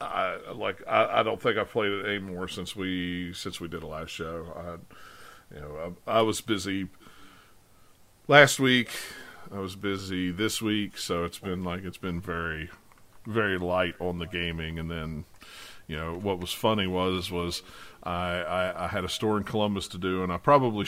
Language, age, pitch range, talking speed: English, 40-59, 90-105 Hz, 190 wpm